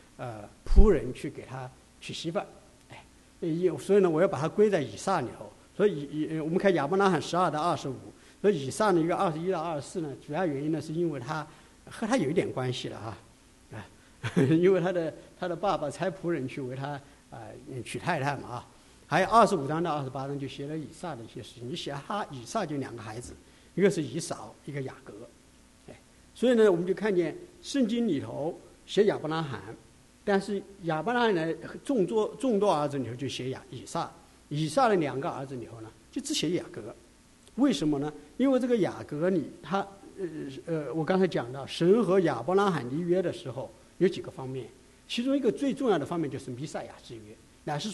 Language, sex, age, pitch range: English, male, 60-79, 140-195 Hz